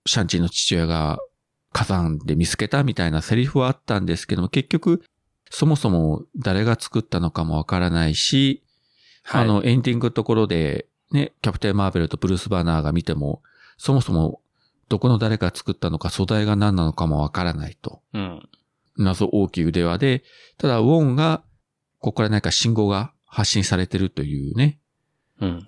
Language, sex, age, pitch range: Japanese, male, 40-59, 90-130 Hz